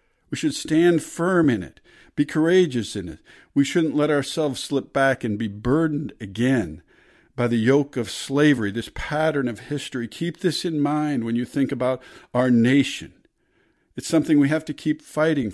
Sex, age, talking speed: male, 50-69, 180 wpm